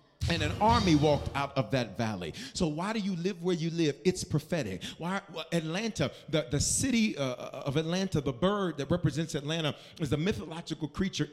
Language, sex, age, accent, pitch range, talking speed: English, male, 40-59, American, 135-185 Hz, 185 wpm